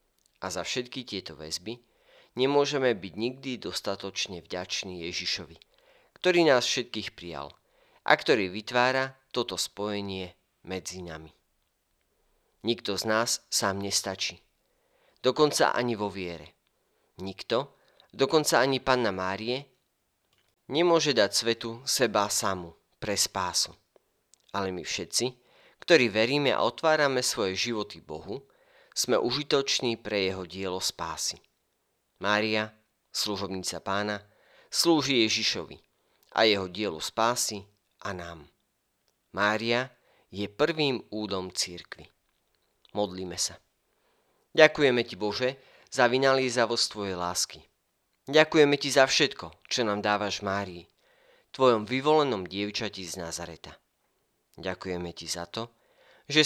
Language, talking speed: Slovak, 110 wpm